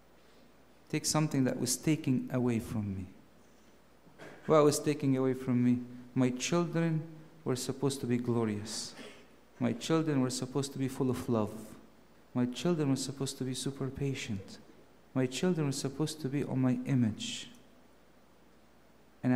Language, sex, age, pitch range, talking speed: English, male, 50-69, 125-150 Hz, 150 wpm